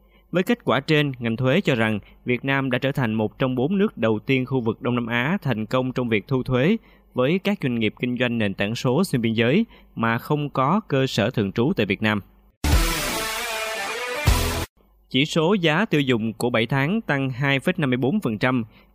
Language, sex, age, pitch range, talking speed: Vietnamese, male, 20-39, 120-160 Hz, 195 wpm